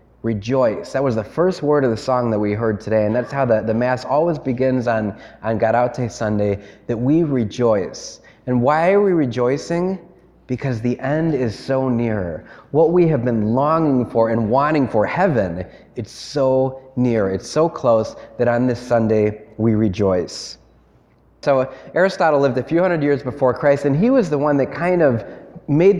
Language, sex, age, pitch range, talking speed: English, male, 20-39, 115-145 Hz, 180 wpm